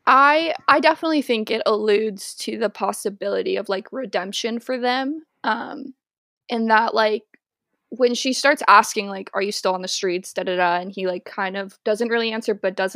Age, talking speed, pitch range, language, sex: 10-29, 195 wpm, 195-235 Hz, English, female